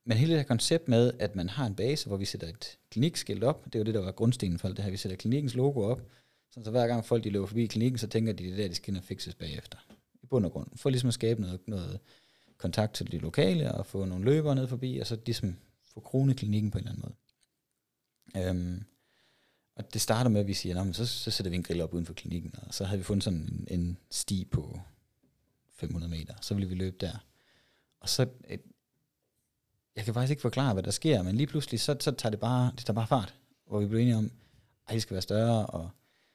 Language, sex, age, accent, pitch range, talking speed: Danish, male, 30-49, native, 95-120 Hz, 250 wpm